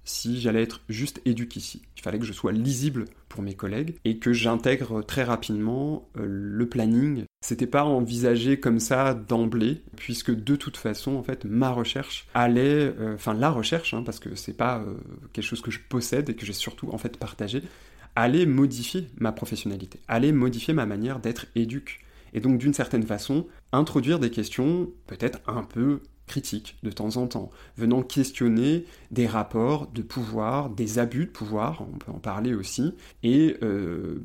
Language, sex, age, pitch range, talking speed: French, male, 30-49, 110-135 Hz, 180 wpm